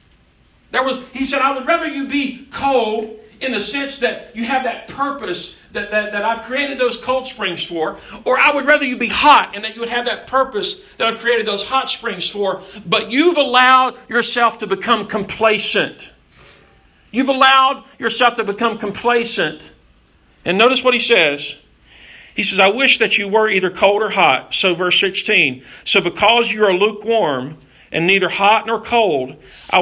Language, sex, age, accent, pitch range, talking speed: English, male, 50-69, American, 200-270 Hz, 185 wpm